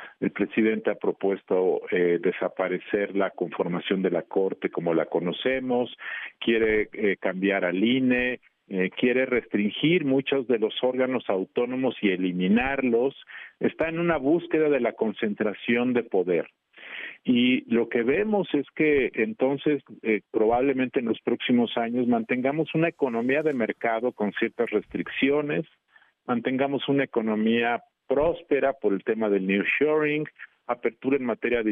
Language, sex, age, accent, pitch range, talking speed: Spanish, male, 50-69, Mexican, 105-145 Hz, 140 wpm